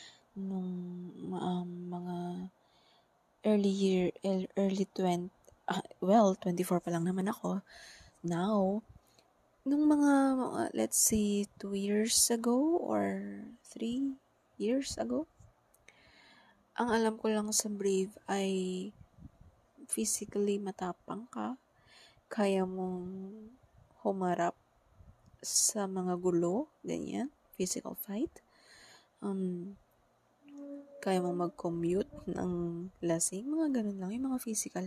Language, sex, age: Filipino, female, 20-39